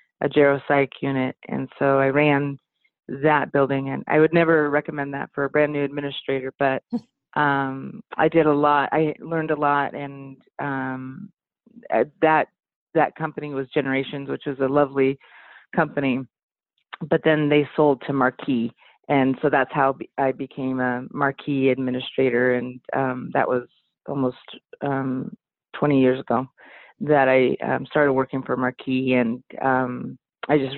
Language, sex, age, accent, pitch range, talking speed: English, female, 30-49, American, 130-145 Hz, 150 wpm